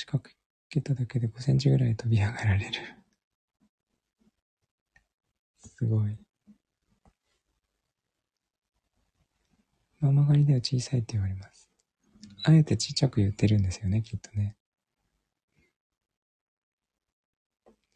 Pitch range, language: 105-140 Hz, Japanese